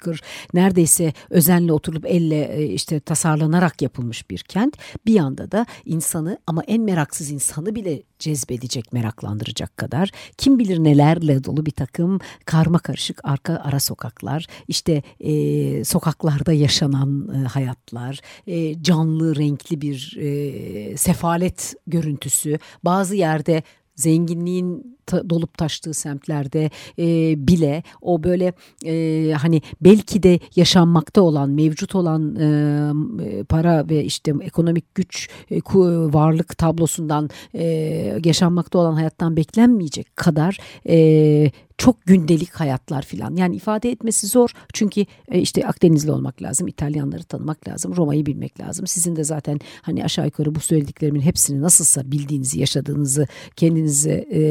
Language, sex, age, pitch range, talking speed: Turkish, female, 60-79, 145-175 Hz, 120 wpm